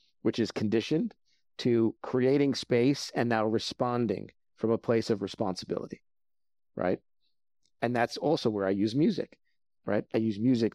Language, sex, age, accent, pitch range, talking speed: English, male, 50-69, American, 105-120 Hz, 145 wpm